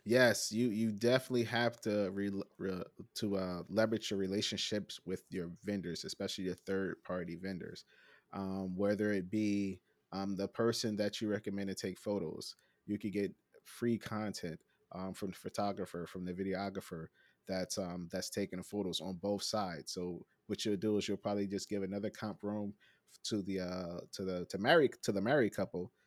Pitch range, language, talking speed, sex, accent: 95-110 Hz, English, 175 wpm, male, American